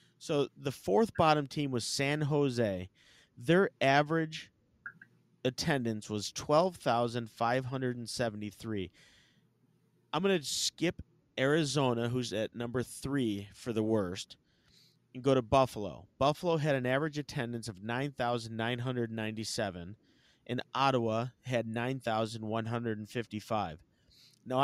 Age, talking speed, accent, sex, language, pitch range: 30-49, 100 wpm, American, male, English, 110-145 Hz